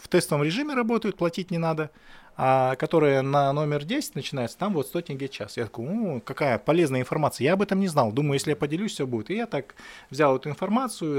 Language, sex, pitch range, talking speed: Russian, male, 120-165 Hz, 210 wpm